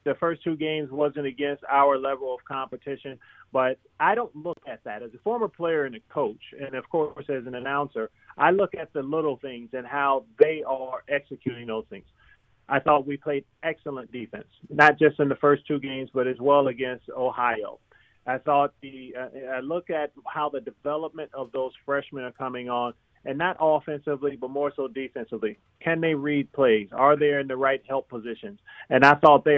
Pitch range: 125-145 Hz